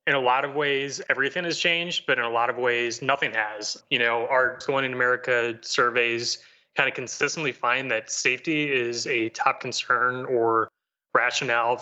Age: 20-39